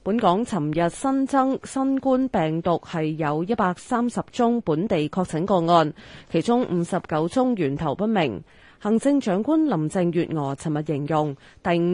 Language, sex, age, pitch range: Chinese, female, 20-39, 160-230 Hz